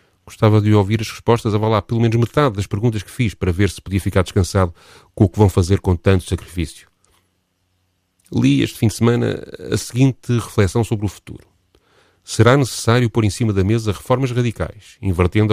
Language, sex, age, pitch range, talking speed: Portuguese, male, 40-59, 90-110 Hz, 190 wpm